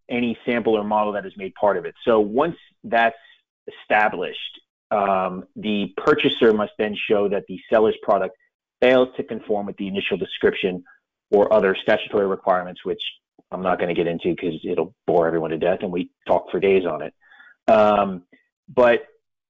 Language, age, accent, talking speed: English, 30-49, American, 175 wpm